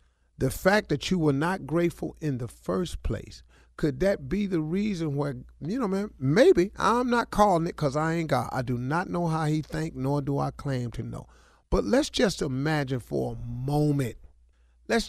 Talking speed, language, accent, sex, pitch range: 200 wpm, English, American, male, 125-175 Hz